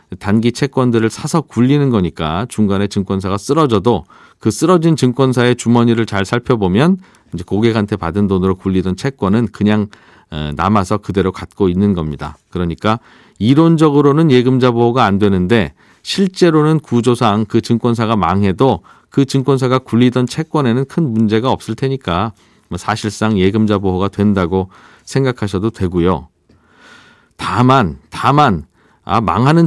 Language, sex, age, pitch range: Korean, male, 40-59, 100-130 Hz